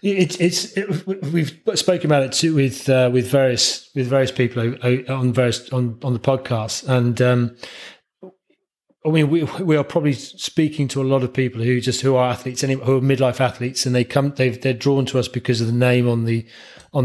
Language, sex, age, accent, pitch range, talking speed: English, male, 30-49, British, 125-150 Hz, 220 wpm